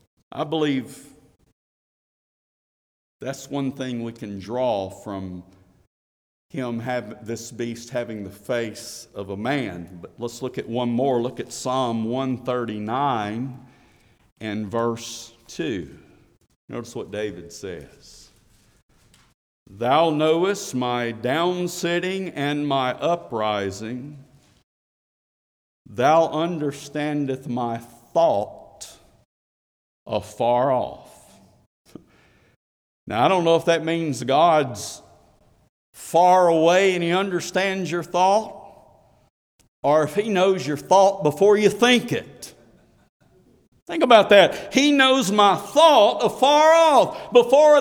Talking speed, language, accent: 110 wpm, English, American